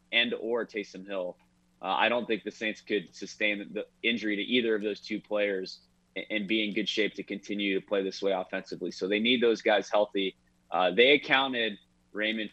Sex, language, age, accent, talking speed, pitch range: male, English, 30-49, American, 205 wpm, 100-115 Hz